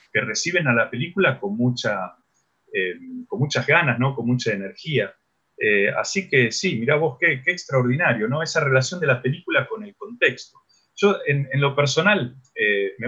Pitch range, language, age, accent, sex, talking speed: 125-180 Hz, Spanish, 30-49, Argentinian, male, 185 wpm